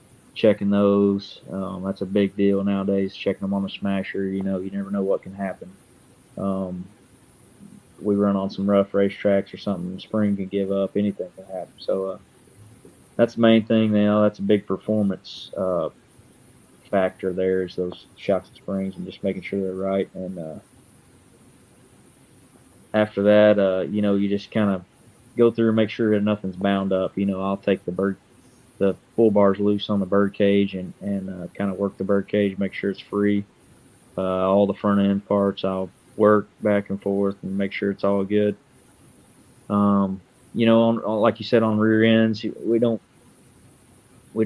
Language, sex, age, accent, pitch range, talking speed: English, male, 20-39, American, 95-105 Hz, 185 wpm